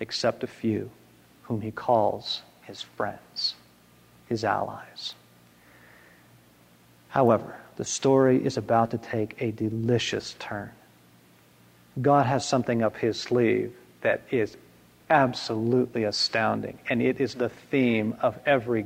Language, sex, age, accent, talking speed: English, male, 50-69, American, 120 wpm